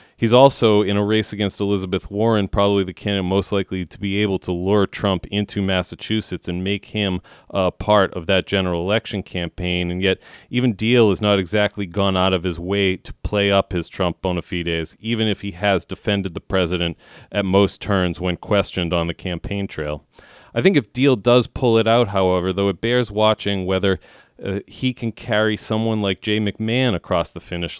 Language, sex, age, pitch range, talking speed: English, male, 40-59, 90-105 Hz, 195 wpm